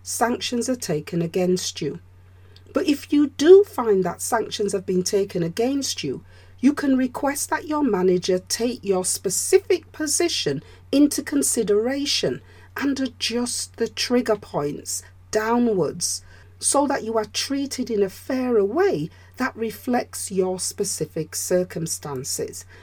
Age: 40-59